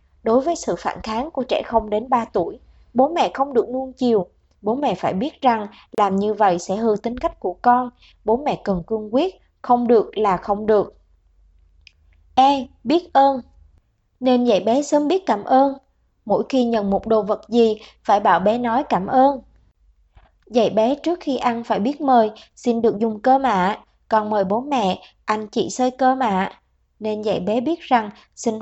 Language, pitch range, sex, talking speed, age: Vietnamese, 210-260 Hz, male, 195 wpm, 20-39